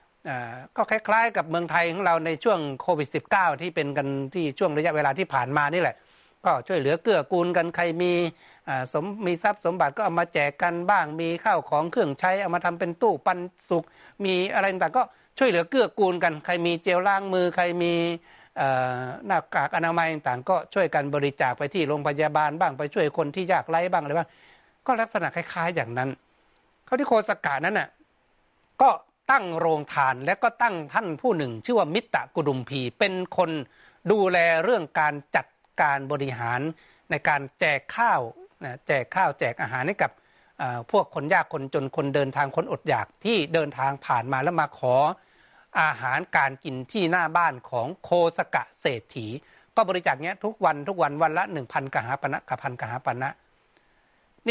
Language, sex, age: Thai, male, 60-79